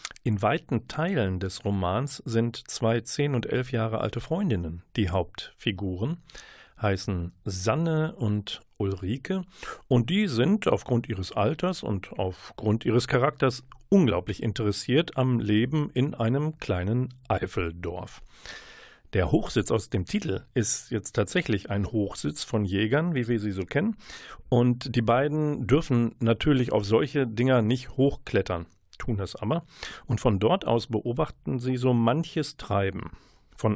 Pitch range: 105-130 Hz